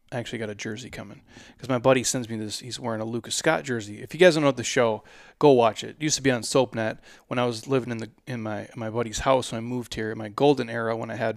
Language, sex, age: English, male, 20-39